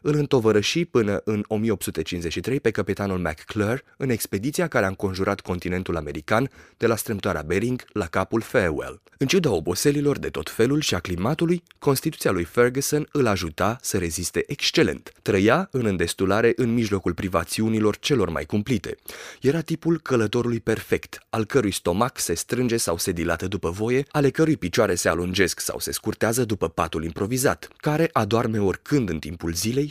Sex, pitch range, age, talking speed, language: male, 95-140 Hz, 30-49, 160 wpm, Romanian